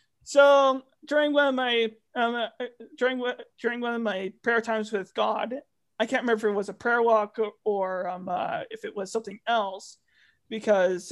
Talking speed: 190 wpm